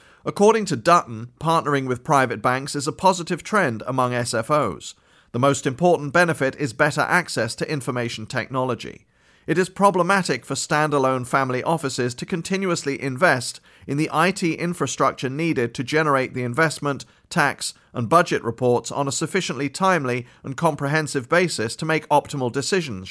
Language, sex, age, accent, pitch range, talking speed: English, male, 40-59, British, 125-155 Hz, 150 wpm